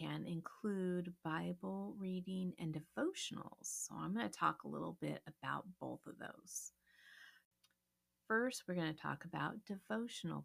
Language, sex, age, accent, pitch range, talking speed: English, female, 40-59, American, 160-215 Hz, 140 wpm